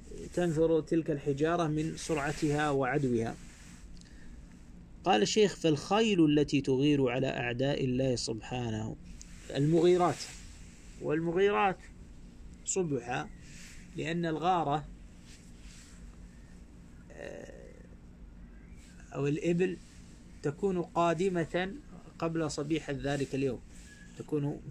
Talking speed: 70 wpm